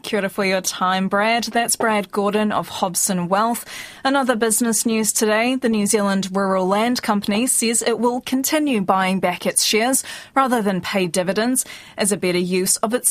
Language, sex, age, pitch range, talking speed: English, female, 20-39, 190-235 Hz, 190 wpm